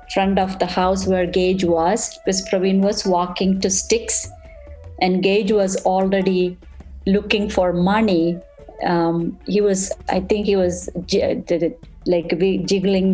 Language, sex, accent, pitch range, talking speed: English, female, Indian, 175-200 Hz, 140 wpm